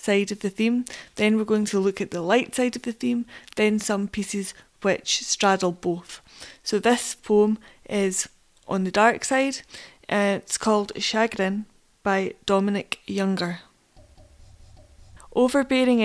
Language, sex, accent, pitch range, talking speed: English, female, British, 195-225 Hz, 140 wpm